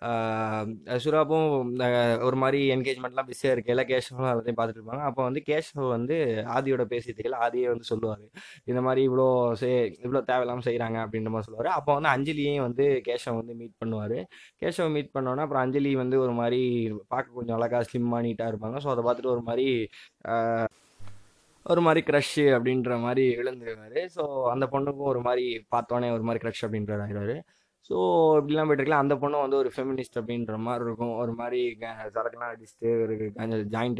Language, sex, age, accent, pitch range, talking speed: Tamil, male, 20-39, native, 115-135 Hz, 155 wpm